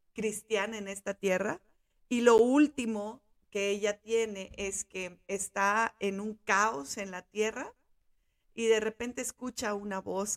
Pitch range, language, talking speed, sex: 185-220 Hz, Spanish, 145 wpm, female